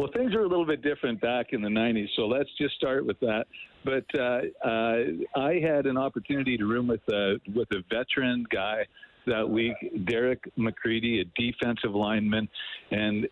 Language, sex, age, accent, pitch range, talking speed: English, male, 50-69, American, 125-170 Hz, 180 wpm